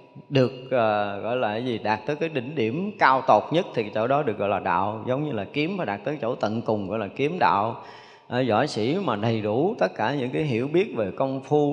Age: 20-39